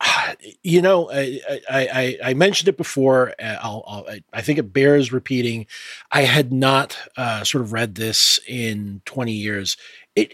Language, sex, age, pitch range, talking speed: English, male, 30-49, 115-145 Hz, 155 wpm